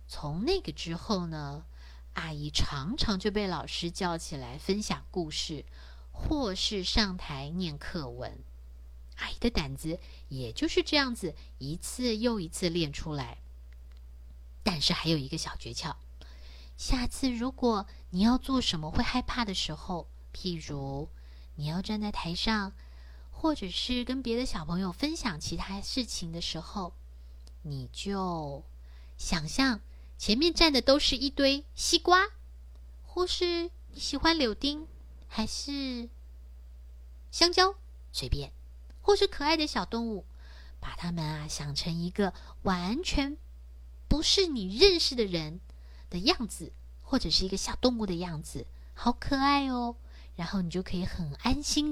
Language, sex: Chinese, female